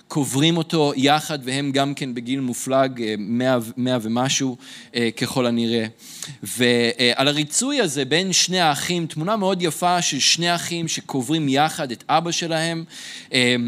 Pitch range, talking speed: 125-160 Hz, 125 wpm